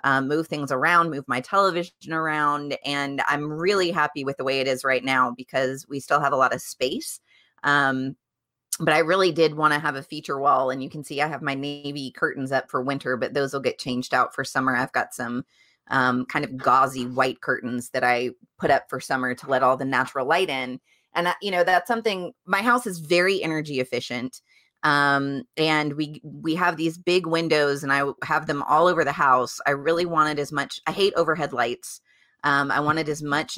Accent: American